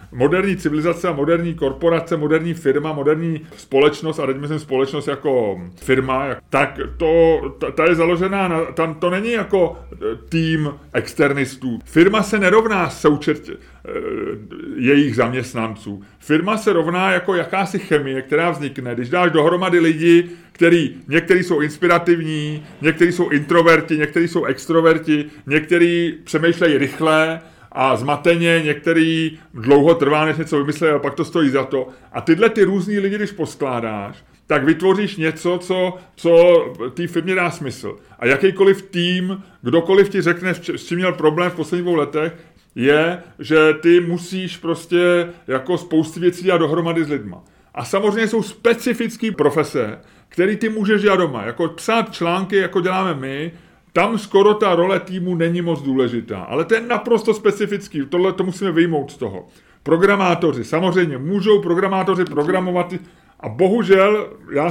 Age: 30-49